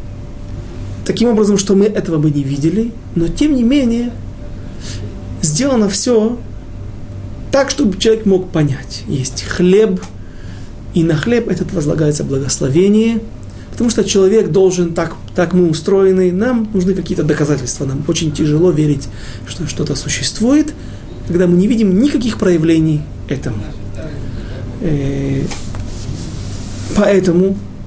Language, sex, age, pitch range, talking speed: Russian, male, 30-49, 120-190 Hz, 120 wpm